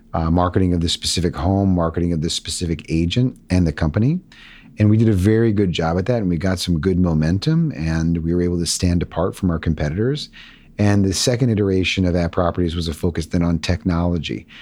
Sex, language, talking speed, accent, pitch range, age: male, English, 215 wpm, American, 80-100 Hz, 40-59